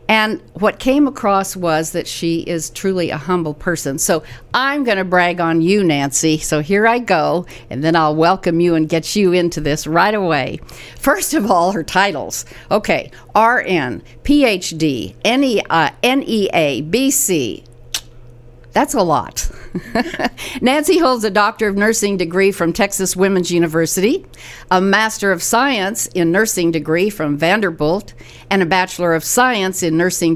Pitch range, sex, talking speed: 145-205 Hz, female, 150 wpm